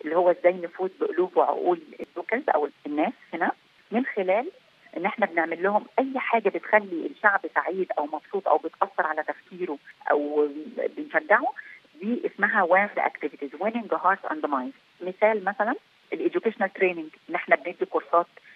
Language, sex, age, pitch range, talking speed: Arabic, female, 30-49, 165-205 Hz, 135 wpm